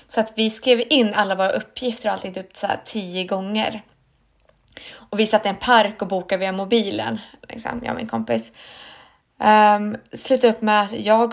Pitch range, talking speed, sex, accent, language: 195-230 Hz, 185 wpm, female, native, Swedish